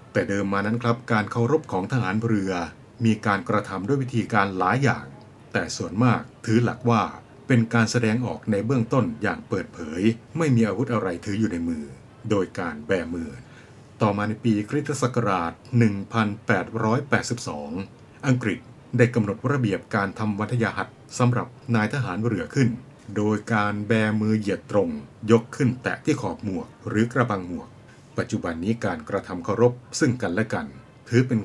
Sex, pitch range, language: male, 105-125 Hz, Thai